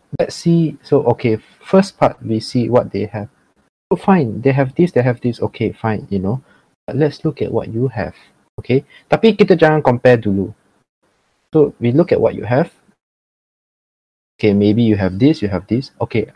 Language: Malay